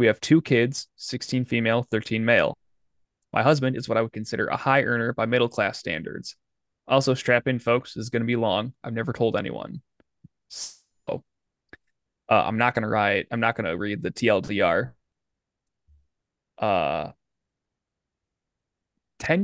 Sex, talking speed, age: male, 160 wpm, 20-39